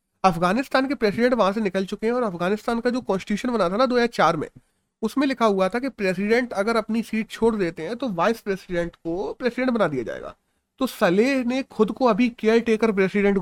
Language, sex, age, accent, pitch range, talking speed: Hindi, male, 30-49, native, 180-230 Hz, 220 wpm